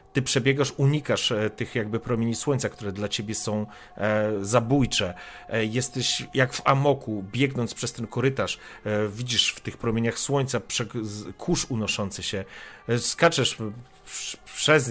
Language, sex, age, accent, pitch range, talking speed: Polish, male, 40-59, native, 105-145 Hz, 120 wpm